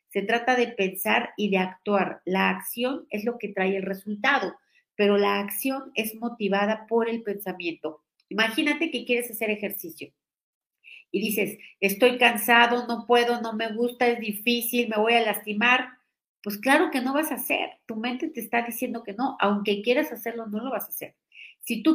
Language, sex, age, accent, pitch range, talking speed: Spanish, female, 40-59, Mexican, 205-245 Hz, 185 wpm